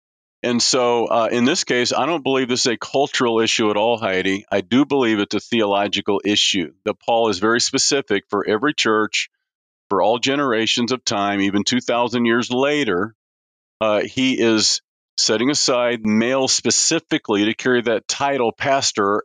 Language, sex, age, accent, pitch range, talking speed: English, male, 50-69, American, 105-125 Hz, 165 wpm